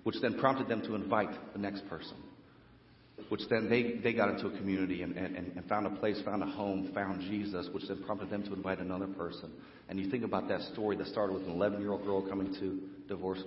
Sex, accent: male, American